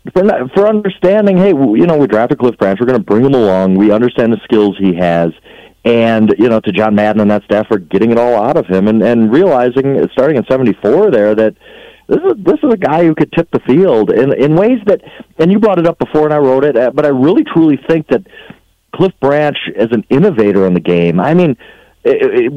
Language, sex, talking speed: English, male, 220 wpm